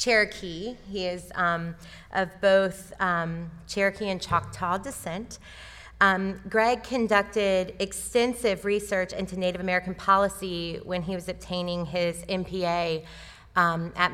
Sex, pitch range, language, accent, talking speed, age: female, 165-190 Hz, English, American, 115 wpm, 30-49